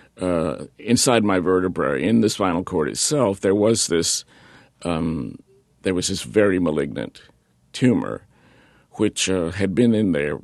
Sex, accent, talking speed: male, American, 150 wpm